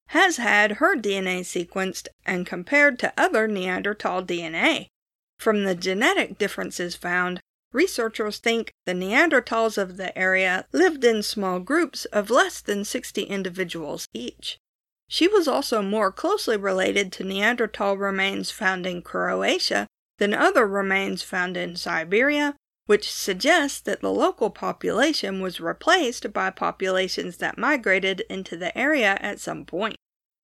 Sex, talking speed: female, 135 wpm